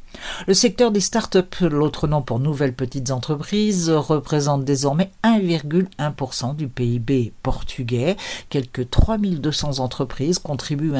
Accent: French